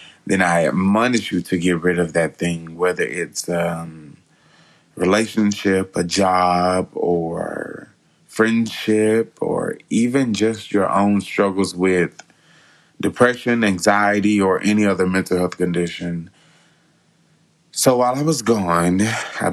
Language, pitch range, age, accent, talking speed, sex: English, 90-110 Hz, 20-39, American, 120 wpm, male